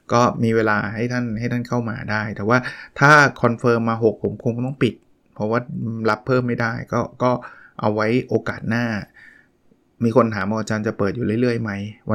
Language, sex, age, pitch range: Thai, male, 20-39, 105-125 Hz